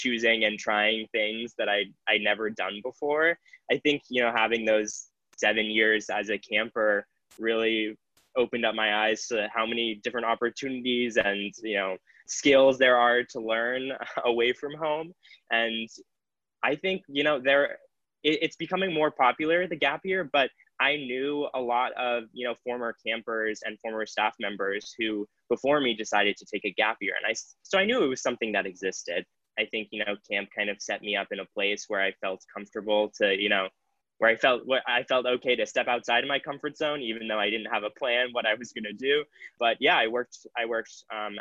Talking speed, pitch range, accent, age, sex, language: 205 wpm, 105-130 Hz, American, 10-29, male, English